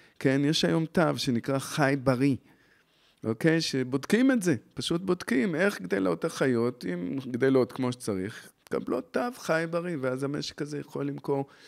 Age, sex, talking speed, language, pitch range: 40-59, male, 150 wpm, Hebrew, 105-150 Hz